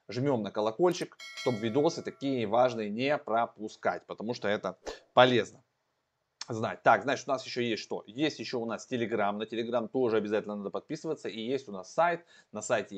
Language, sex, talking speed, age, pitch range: Russian, male, 180 wpm, 20-39, 110-150 Hz